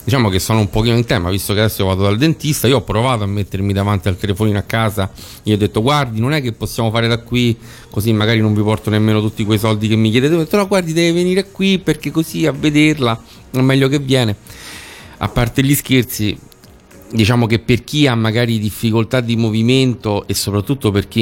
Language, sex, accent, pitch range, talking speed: Italian, male, native, 100-130 Hz, 220 wpm